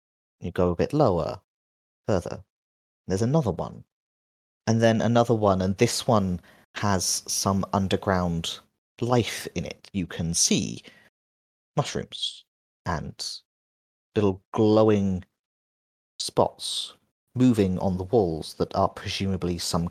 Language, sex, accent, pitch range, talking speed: English, male, British, 80-110 Hz, 115 wpm